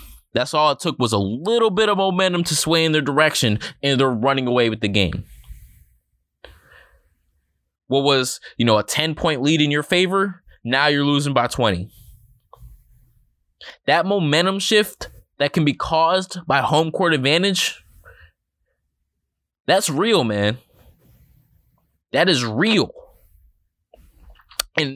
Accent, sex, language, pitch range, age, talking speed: American, male, English, 100-155 Hz, 20-39, 135 wpm